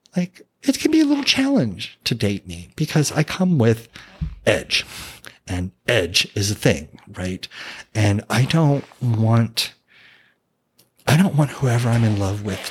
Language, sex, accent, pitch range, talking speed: English, male, American, 95-115 Hz, 155 wpm